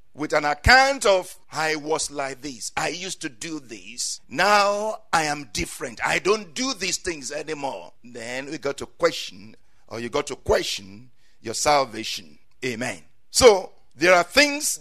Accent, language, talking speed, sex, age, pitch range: Nigerian, English, 160 wpm, male, 50-69, 150-225 Hz